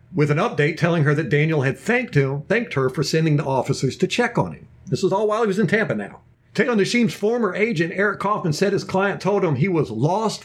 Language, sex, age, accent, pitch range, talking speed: English, male, 50-69, American, 145-190 Hz, 245 wpm